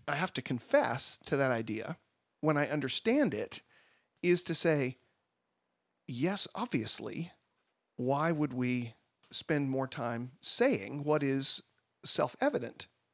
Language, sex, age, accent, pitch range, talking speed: English, male, 40-59, American, 125-160 Hz, 120 wpm